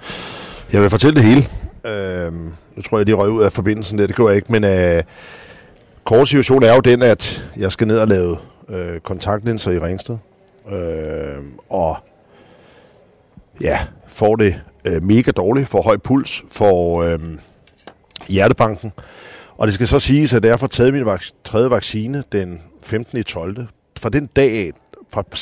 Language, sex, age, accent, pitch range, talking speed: Danish, male, 50-69, native, 95-120 Hz, 170 wpm